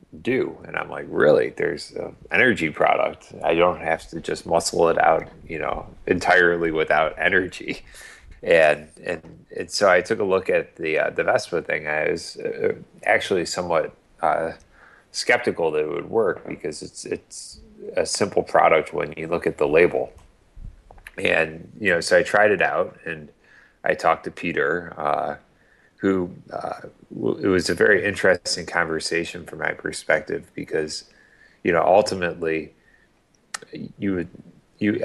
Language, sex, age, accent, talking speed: English, male, 30-49, American, 160 wpm